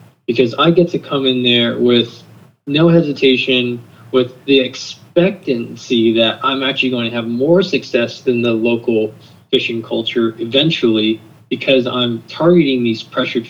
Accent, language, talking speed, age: American, English, 140 wpm, 20-39